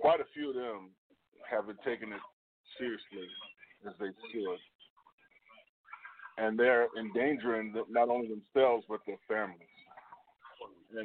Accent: American